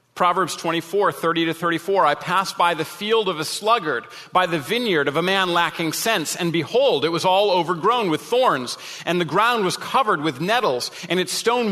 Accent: American